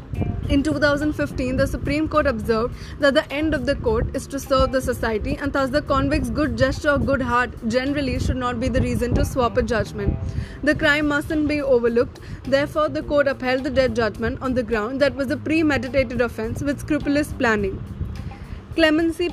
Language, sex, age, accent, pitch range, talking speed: English, female, 20-39, Indian, 255-300 Hz, 185 wpm